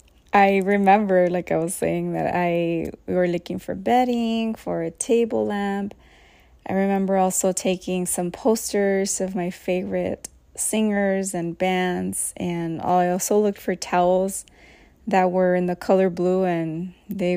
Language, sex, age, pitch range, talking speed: English, female, 20-39, 180-200 Hz, 150 wpm